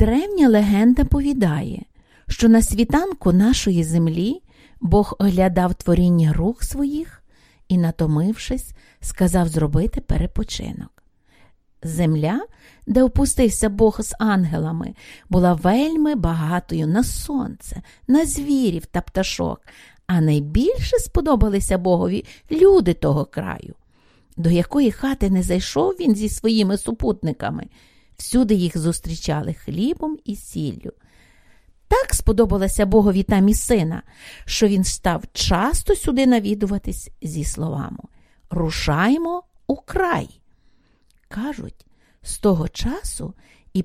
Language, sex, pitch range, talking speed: English, female, 170-250 Hz, 105 wpm